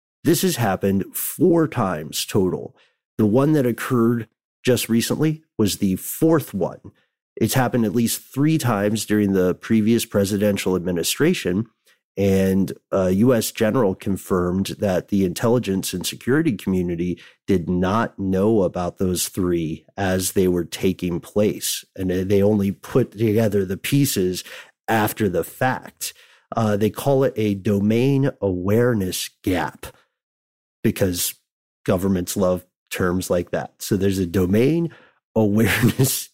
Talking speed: 130 wpm